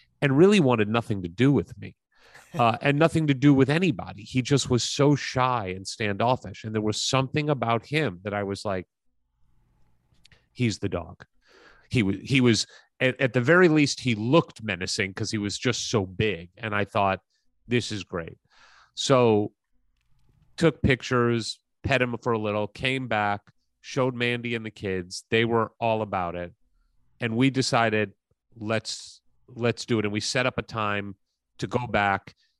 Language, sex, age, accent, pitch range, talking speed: English, male, 30-49, American, 95-130 Hz, 175 wpm